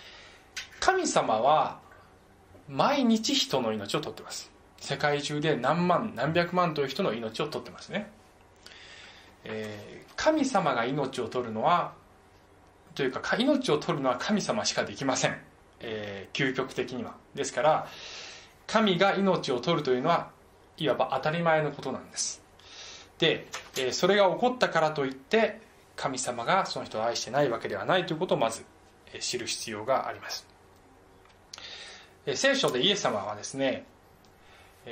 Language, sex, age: Japanese, male, 20-39